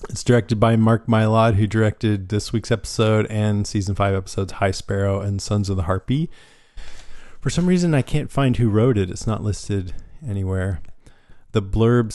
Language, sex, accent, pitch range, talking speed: English, male, American, 95-110 Hz, 180 wpm